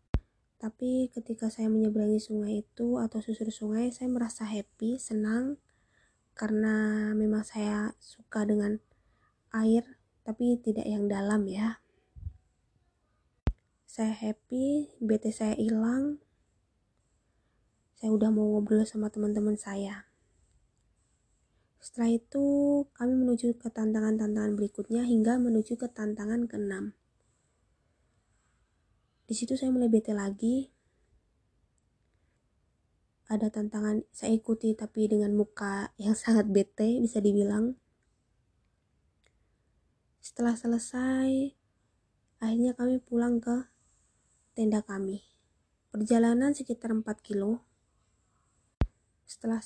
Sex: female